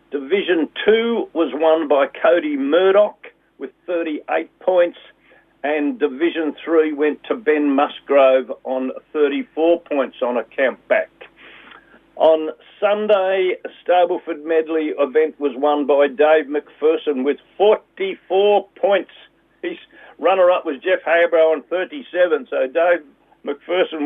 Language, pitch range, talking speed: English, 155-190 Hz, 120 wpm